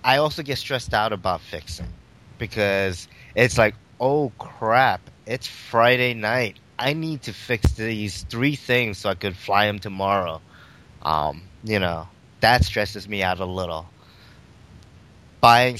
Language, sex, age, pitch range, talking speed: English, male, 20-39, 100-120 Hz, 145 wpm